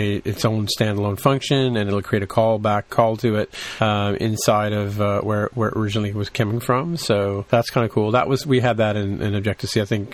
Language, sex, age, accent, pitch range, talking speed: English, male, 40-59, American, 100-120 Hz, 230 wpm